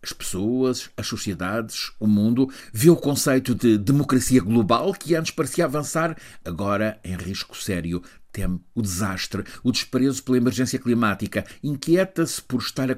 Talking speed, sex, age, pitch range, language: 155 wpm, male, 60-79, 100-130 Hz, Portuguese